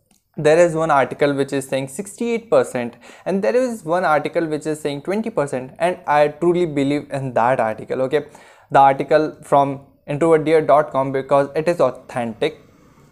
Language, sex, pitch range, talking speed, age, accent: Hindi, male, 140-165 Hz, 160 wpm, 20-39, native